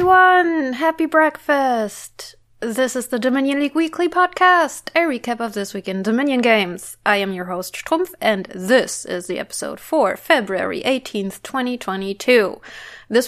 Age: 20-39